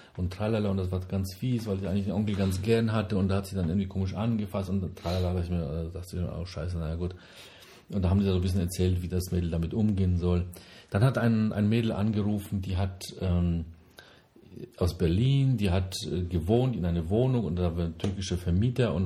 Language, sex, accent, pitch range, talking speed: German, male, German, 90-110 Hz, 220 wpm